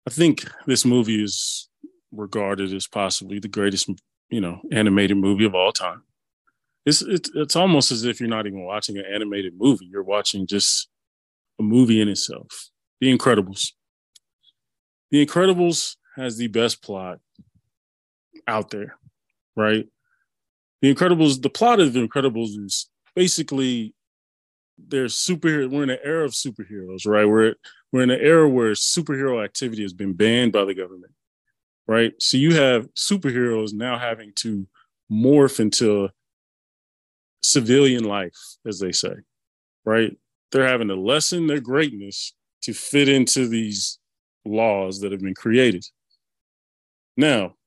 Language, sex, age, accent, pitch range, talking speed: English, male, 30-49, American, 100-135 Hz, 140 wpm